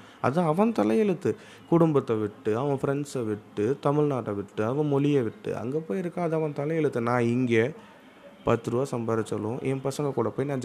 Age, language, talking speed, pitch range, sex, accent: 30-49, Tamil, 160 wpm, 110-140 Hz, male, native